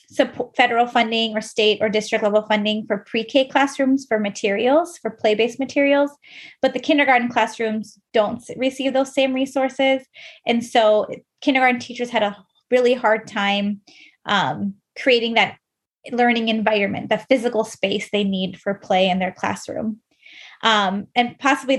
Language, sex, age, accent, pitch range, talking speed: English, female, 20-39, American, 215-260 Hz, 145 wpm